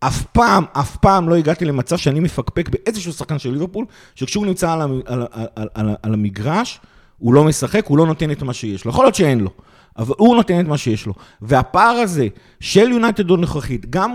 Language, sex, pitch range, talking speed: Hebrew, male, 130-180 Hz, 210 wpm